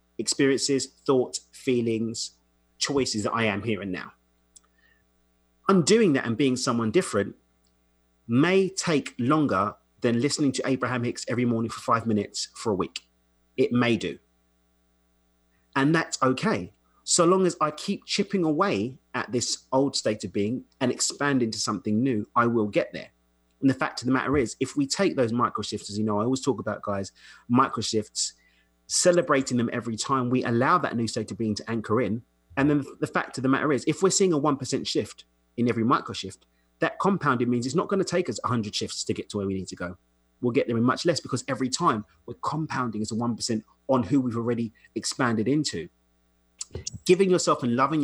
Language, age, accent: English, 30-49, British